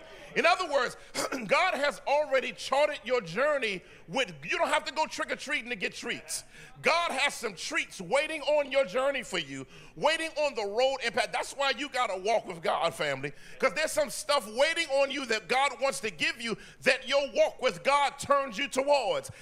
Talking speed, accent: 200 wpm, American